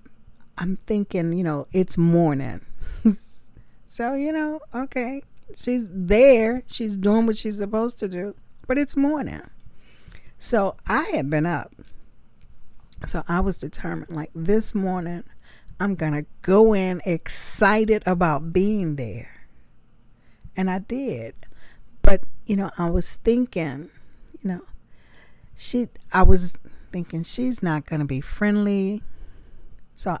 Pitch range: 165-215 Hz